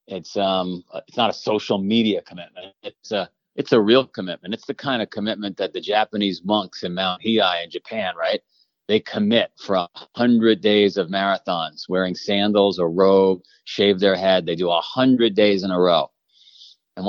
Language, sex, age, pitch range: English, male, 40-59, 95-110 Hz